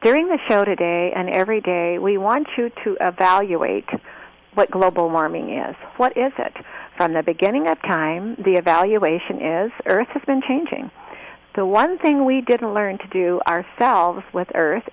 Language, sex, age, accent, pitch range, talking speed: English, female, 50-69, American, 180-210 Hz, 170 wpm